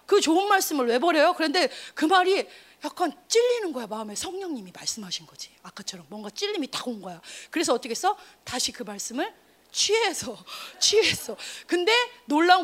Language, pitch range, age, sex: Korean, 250-365 Hz, 30-49, female